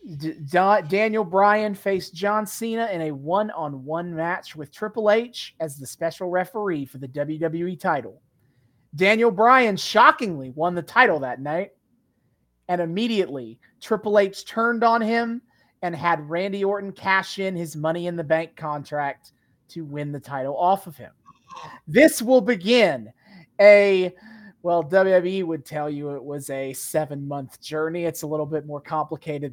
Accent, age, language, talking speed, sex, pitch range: American, 30-49, English, 150 wpm, male, 160-225 Hz